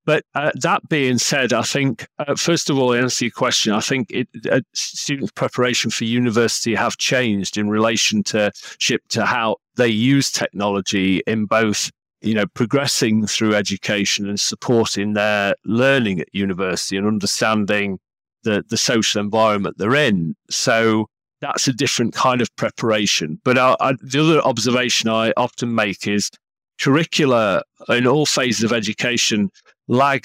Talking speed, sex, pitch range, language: 155 wpm, male, 110-135 Hz, English